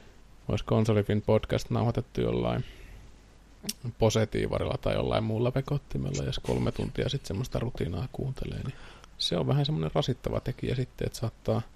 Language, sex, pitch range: Finnish, male, 105-130 Hz